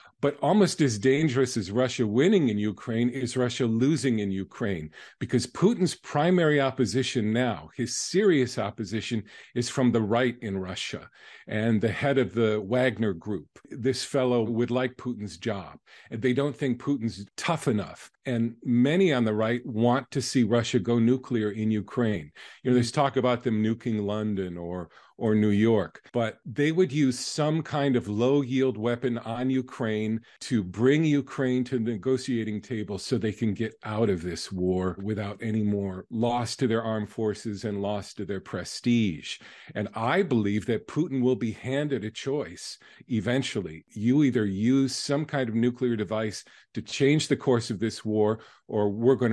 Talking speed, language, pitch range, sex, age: 170 wpm, English, 110-130 Hz, male, 50-69